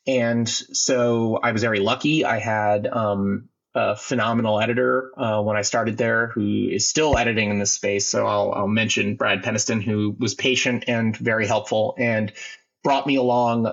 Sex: male